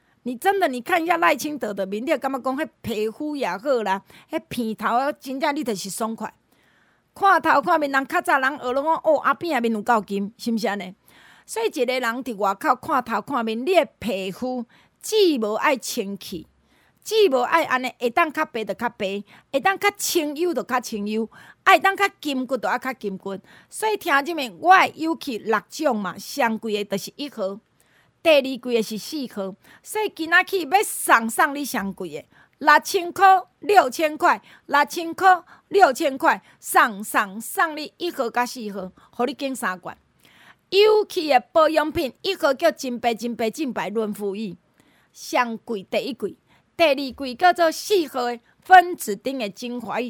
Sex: female